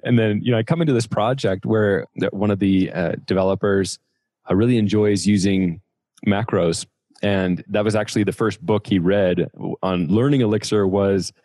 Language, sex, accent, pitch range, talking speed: English, male, American, 95-115 Hz, 175 wpm